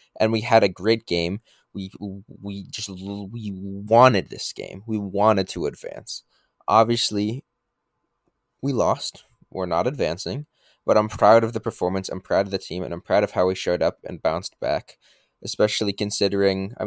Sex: male